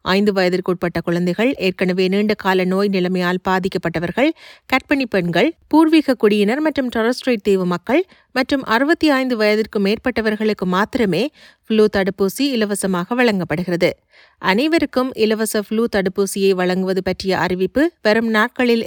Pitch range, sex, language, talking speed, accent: 145-215 Hz, male, Tamil, 110 wpm, native